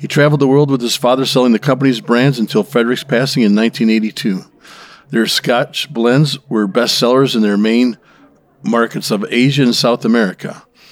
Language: English